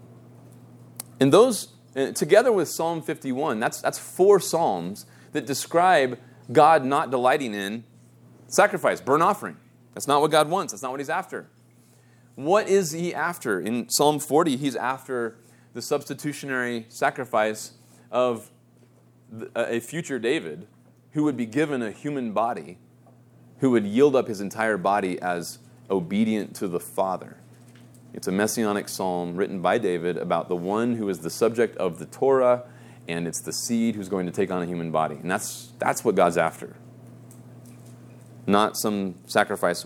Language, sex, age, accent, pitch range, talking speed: English, male, 30-49, American, 95-130 Hz, 155 wpm